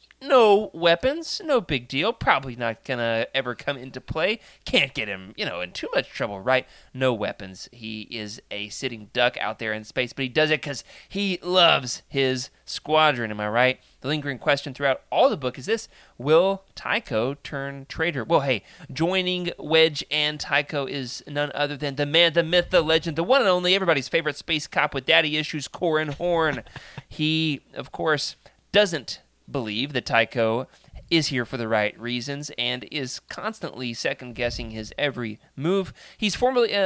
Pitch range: 120-170 Hz